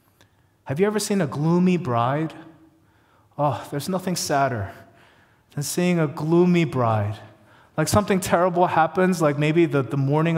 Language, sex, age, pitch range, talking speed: English, male, 30-49, 110-165 Hz, 145 wpm